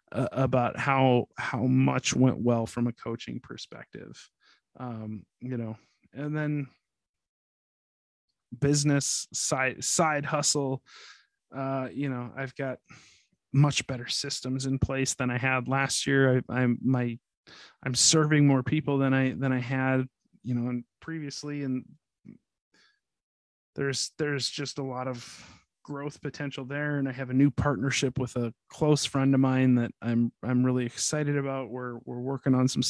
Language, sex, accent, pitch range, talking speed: English, male, American, 120-140 Hz, 150 wpm